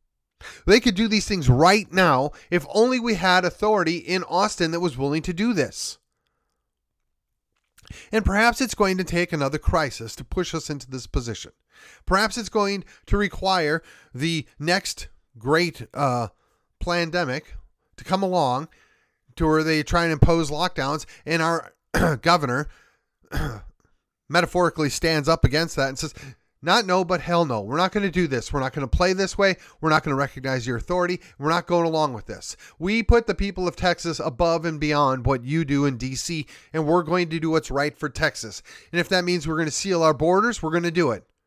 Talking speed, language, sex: 190 wpm, English, male